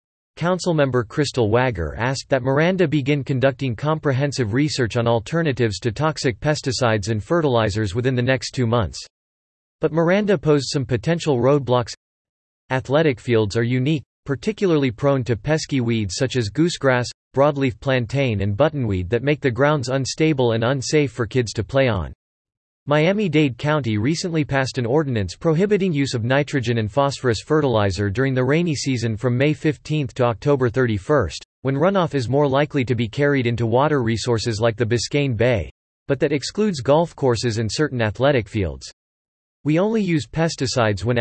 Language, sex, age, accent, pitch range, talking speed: English, male, 40-59, American, 120-150 Hz, 155 wpm